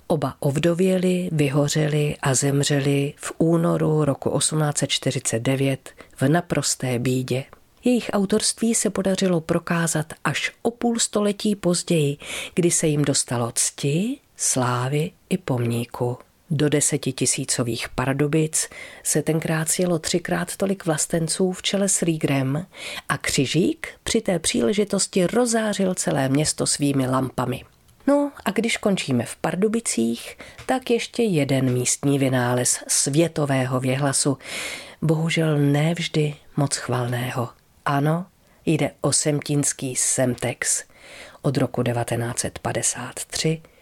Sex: female